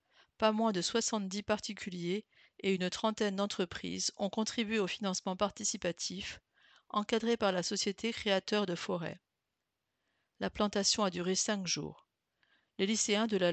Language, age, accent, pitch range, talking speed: English, 50-69, French, 180-215 Hz, 140 wpm